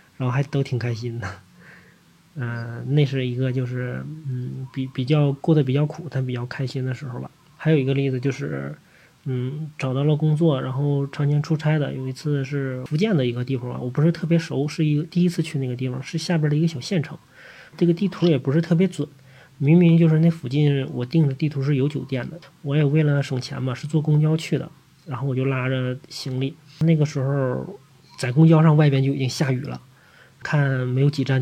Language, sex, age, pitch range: Chinese, male, 20-39, 130-155 Hz